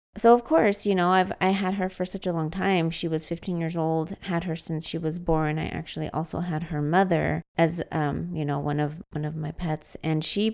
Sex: female